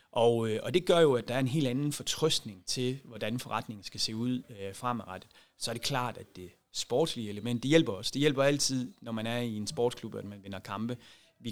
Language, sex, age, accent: Danish, male, 30-49, native